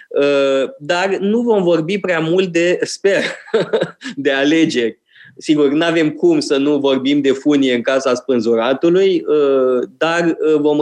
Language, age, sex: Romanian, 20-39, male